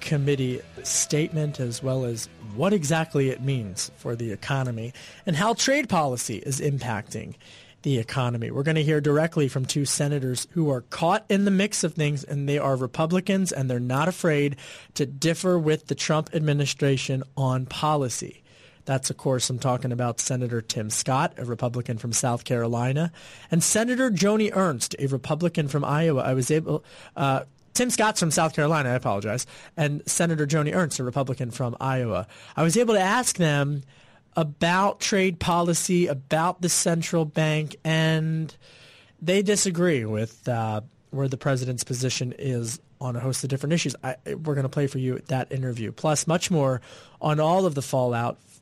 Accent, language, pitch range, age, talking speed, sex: American, English, 125-160 Hz, 30-49, 170 wpm, male